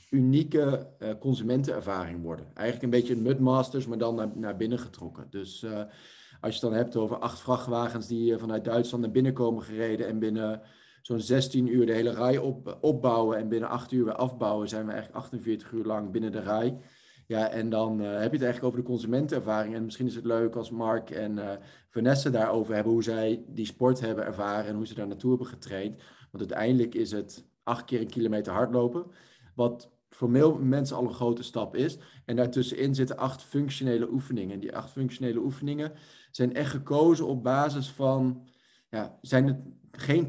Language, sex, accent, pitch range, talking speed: Dutch, male, Dutch, 110-130 Hz, 195 wpm